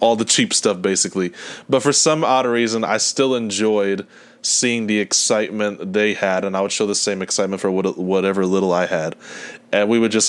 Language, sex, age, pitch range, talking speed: English, male, 20-39, 95-115 Hz, 200 wpm